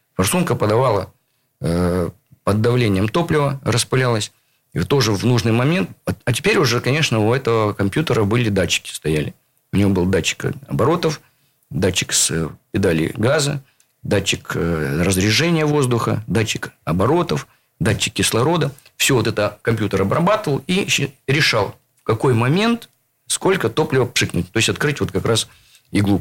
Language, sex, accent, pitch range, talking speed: Russian, male, native, 105-140 Hz, 130 wpm